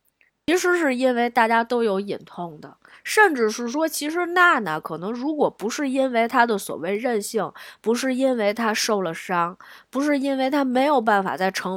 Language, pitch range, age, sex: Chinese, 185-280 Hz, 20-39, female